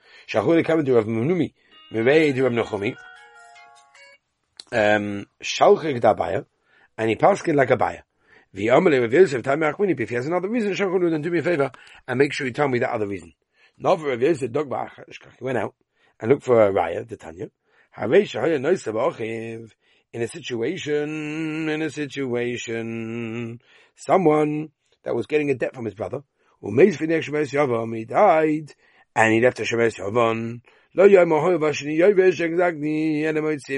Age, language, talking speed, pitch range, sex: 40-59, English, 165 wpm, 115-155 Hz, male